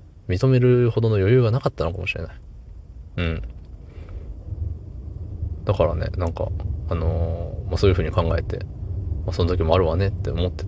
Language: Japanese